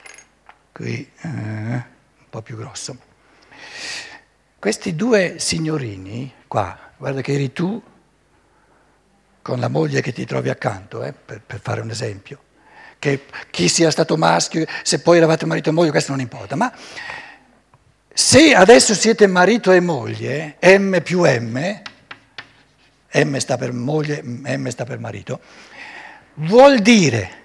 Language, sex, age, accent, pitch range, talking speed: Italian, male, 60-79, native, 135-210 Hz, 130 wpm